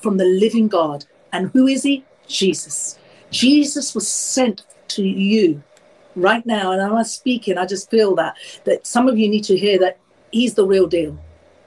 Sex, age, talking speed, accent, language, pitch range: female, 50-69, 185 wpm, British, English, 185-265 Hz